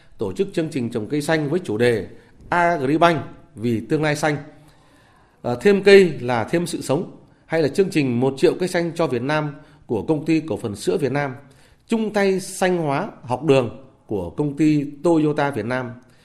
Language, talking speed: Vietnamese, 195 wpm